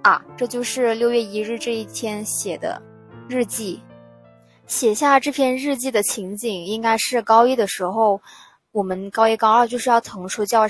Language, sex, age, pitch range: Chinese, female, 20-39, 200-250 Hz